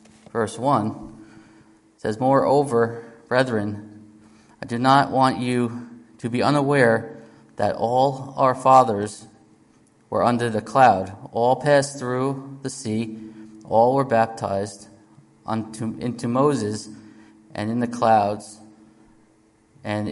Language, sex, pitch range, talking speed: English, male, 110-125 Hz, 105 wpm